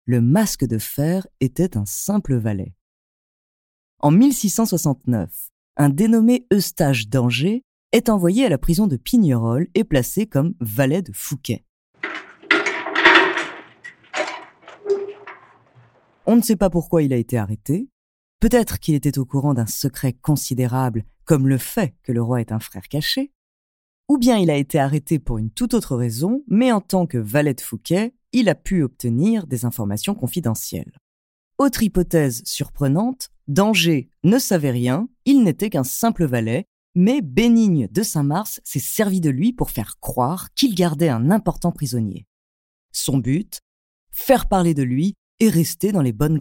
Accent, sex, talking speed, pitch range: French, female, 155 wpm, 125-205 Hz